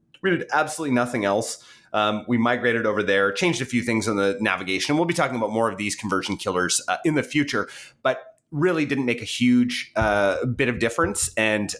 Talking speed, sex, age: 210 wpm, male, 30-49